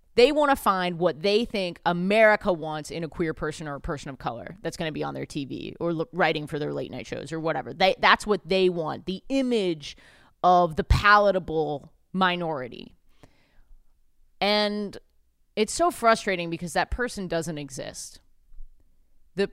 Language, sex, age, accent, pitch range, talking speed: English, female, 20-39, American, 160-200 Hz, 170 wpm